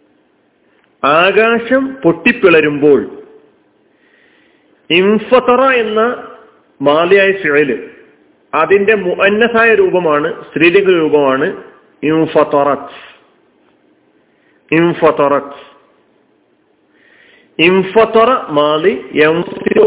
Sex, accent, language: male, native, Malayalam